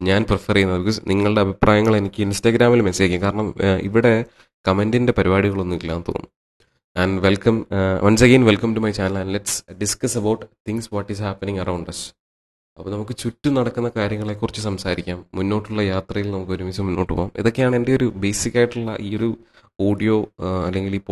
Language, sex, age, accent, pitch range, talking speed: English, male, 20-39, Indian, 90-105 Hz, 95 wpm